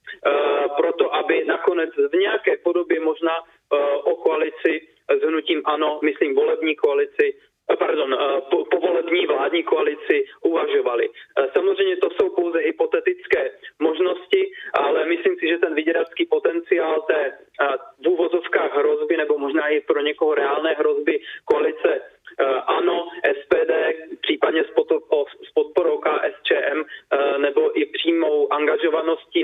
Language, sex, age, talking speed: Czech, male, 30-49, 105 wpm